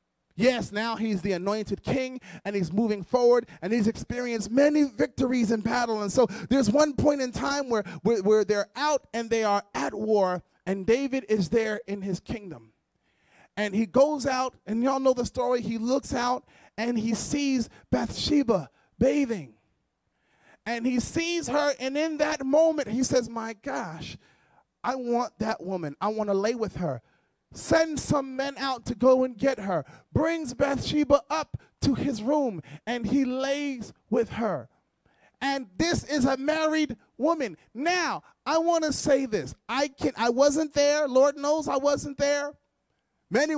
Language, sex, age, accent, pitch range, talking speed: English, male, 30-49, American, 220-285 Hz, 165 wpm